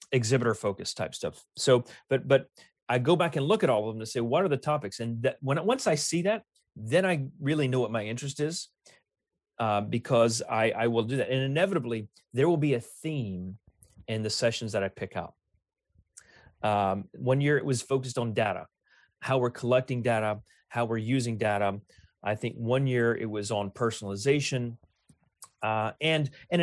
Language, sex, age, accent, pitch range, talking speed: English, male, 30-49, American, 115-140 Hz, 190 wpm